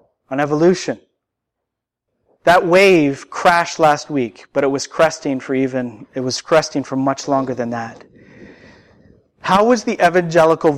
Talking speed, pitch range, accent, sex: 140 wpm, 185-265 Hz, American, male